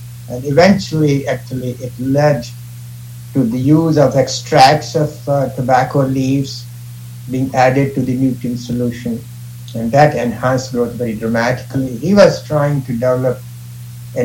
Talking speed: 135 wpm